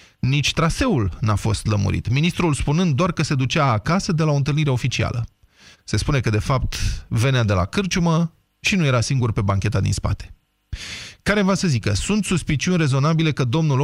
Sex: male